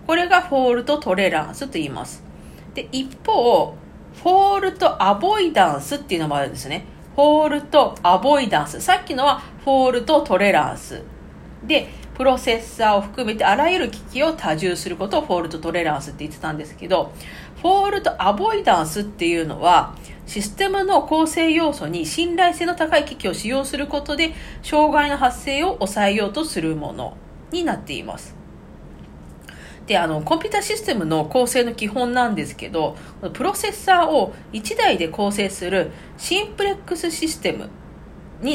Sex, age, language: female, 40-59, Japanese